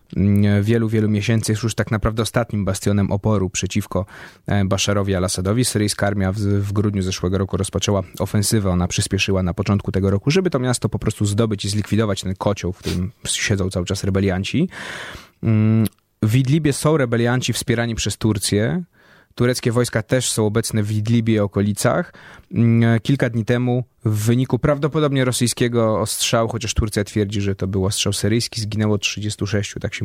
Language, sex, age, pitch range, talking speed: Polish, male, 20-39, 100-115 Hz, 160 wpm